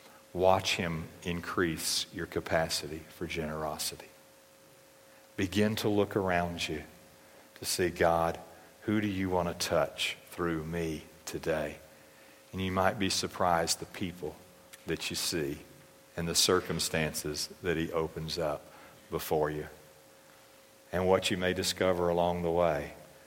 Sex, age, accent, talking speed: male, 50-69, American, 130 wpm